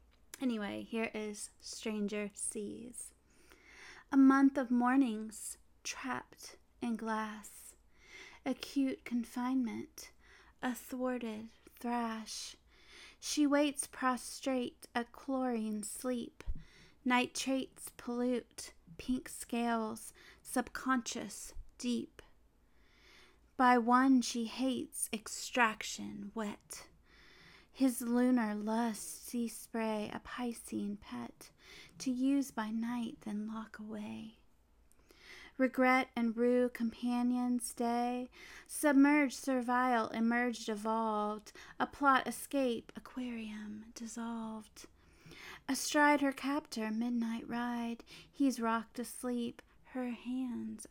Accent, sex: American, female